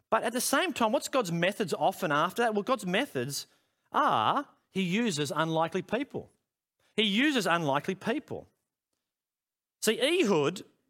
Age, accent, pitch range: 40-59, Australian, 115-165 Hz